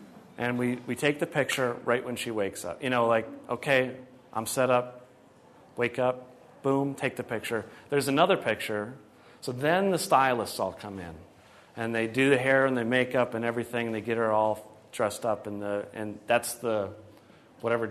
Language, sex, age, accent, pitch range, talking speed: English, male, 40-59, American, 110-130 Hz, 190 wpm